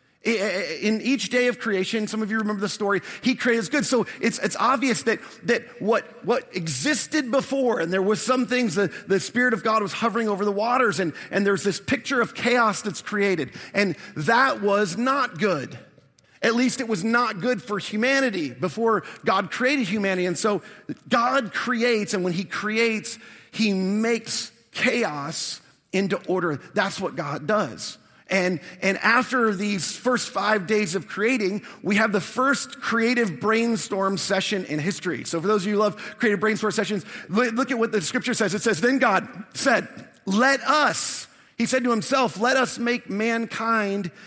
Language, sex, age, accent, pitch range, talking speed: English, male, 40-59, American, 195-240 Hz, 180 wpm